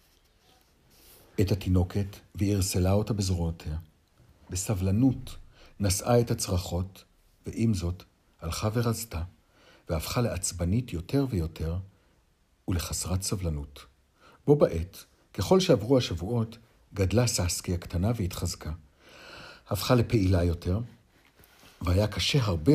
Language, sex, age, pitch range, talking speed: Hebrew, male, 60-79, 90-140 Hz, 90 wpm